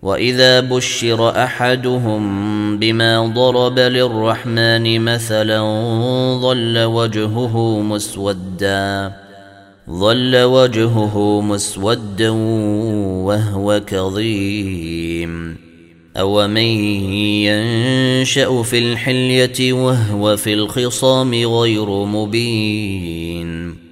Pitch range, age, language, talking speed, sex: 100-120 Hz, 30-49, Arabic, 65 wpm, male